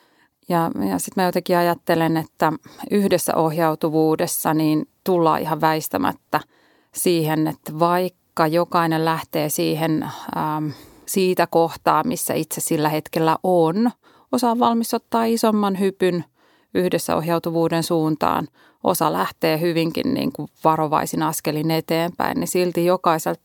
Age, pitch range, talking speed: 30-49, 160-180 Hz, 115 wpm